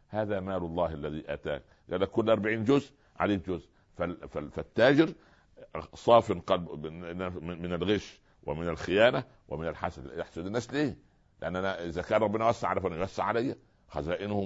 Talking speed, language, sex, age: 130 wpm, English, male, 60-79